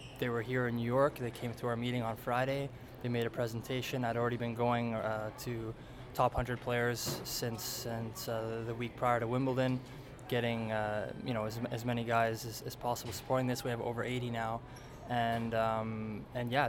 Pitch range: 115-125 Hz